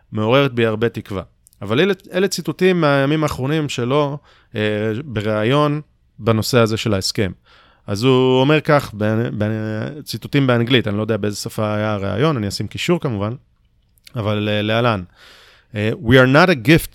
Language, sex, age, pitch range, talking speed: Hebrew, male, 30-49, 105-140 Hz, 155 wpm